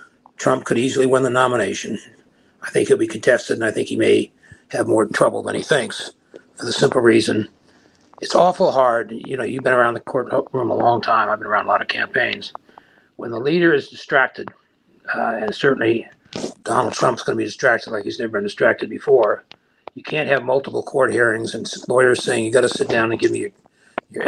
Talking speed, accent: 205 wpm, American